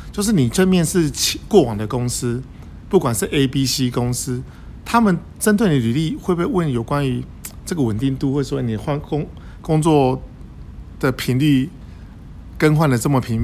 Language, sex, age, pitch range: Chinese, male, 50-69, 110-150 Hz